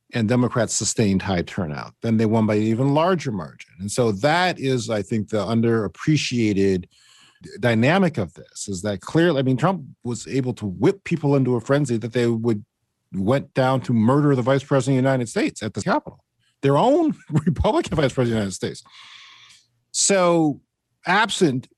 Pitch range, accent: 100-140 Hz, American